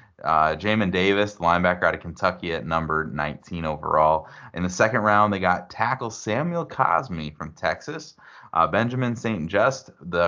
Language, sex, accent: English, male, American